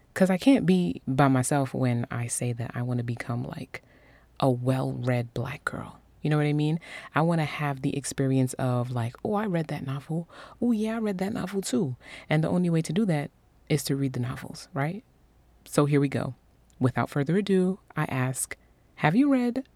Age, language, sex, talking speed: 30-49, English, female, 210 wpm